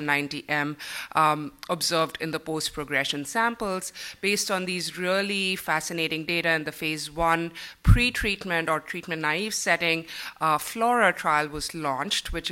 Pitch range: 150-185 Hz